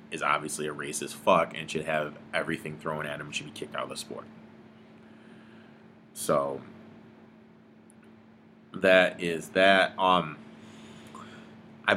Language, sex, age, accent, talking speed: English, male, 30-49, American, 135 wpm